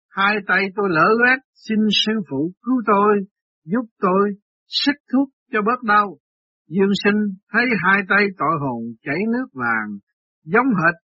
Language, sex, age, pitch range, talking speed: Vietnamese, male, 60-79, 150-225 Hz, 155 wpm